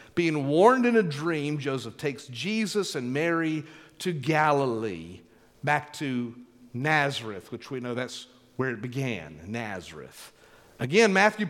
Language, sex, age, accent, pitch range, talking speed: English, male, 50-69, American, 120-160 Hz, 130 wpm